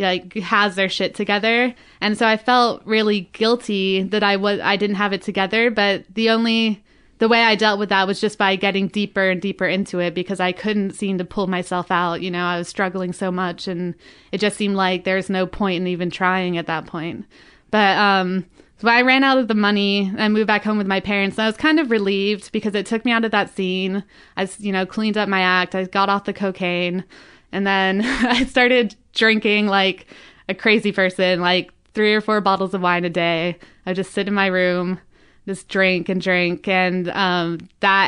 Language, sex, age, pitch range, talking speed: English, female, 20-39, 185-210 Hz, 220 wpm